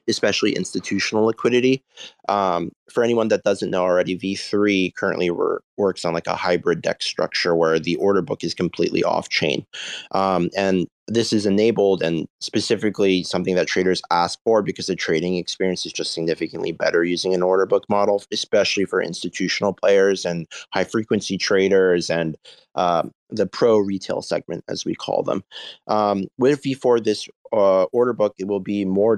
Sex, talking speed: male, 165 wpm